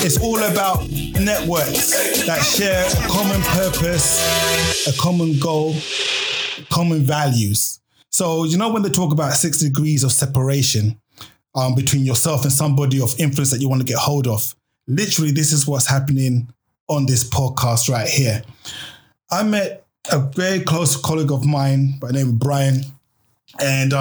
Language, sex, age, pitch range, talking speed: English, male, 20-39, 130-155 Hz, 155 wpm